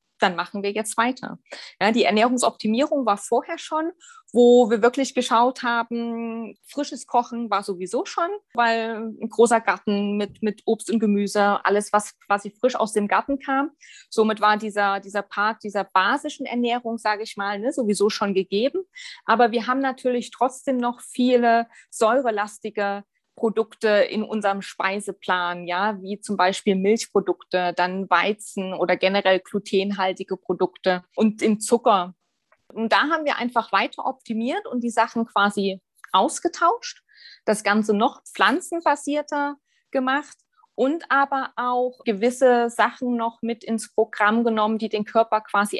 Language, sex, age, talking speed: German, female, 20-39, 145 wpm